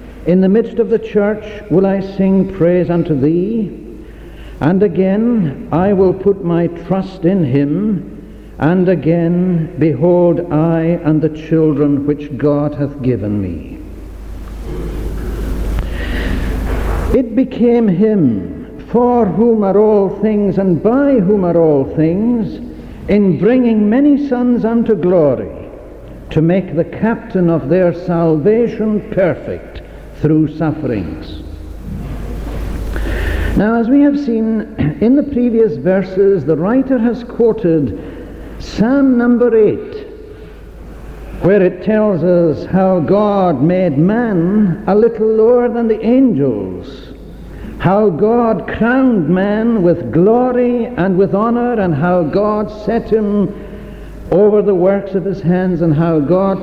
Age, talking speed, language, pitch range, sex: 60-79, 125 wpm, English, 160-220 Hz, male